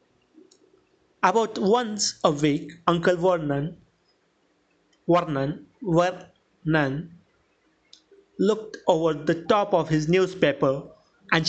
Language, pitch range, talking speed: English, 160-225 Hz, 85 wpm